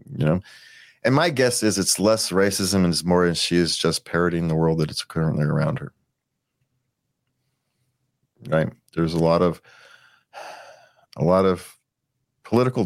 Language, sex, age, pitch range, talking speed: English, male, 40-59, 85-125 Hz, 155 wpm